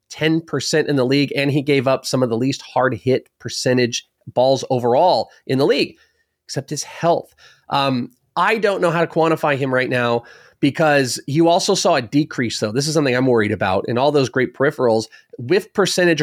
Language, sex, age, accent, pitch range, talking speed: English, male, 30-49, American, 125-160 Hz, 195 wpm